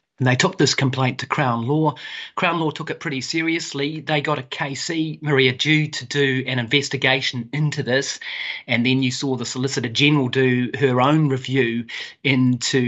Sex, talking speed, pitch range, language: male, 175 wpm, 130-150 Hz, English